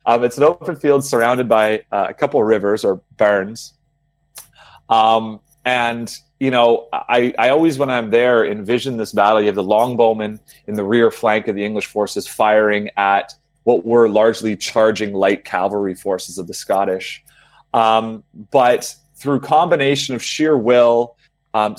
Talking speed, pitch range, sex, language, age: 160 wpm, 100-120 Hz, male, English, 30-49